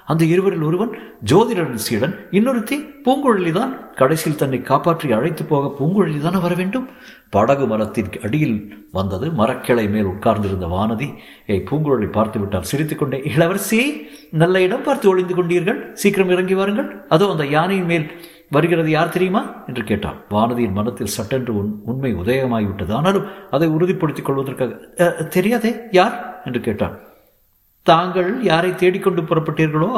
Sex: male